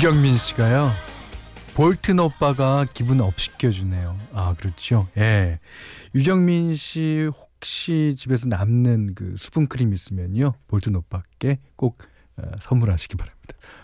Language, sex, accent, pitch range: Korean, male, native, 95-145 Hz